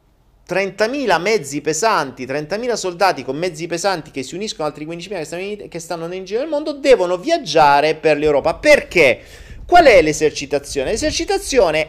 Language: Italian